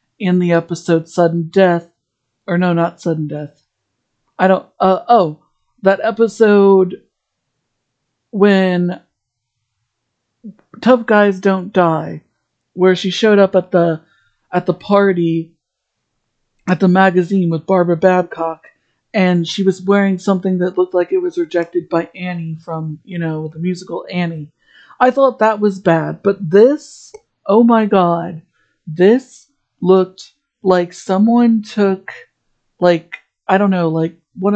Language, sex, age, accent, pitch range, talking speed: English, female, 60-79, American, 170-215 Hz, 130 wpm